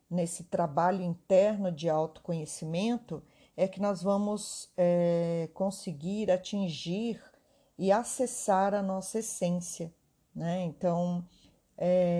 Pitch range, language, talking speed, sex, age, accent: 160-195 Hz, Portuguese, 100 wpm, female, 50-69, Brazilian